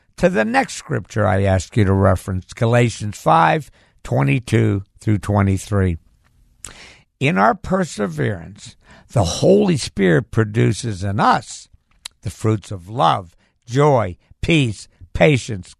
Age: 60-79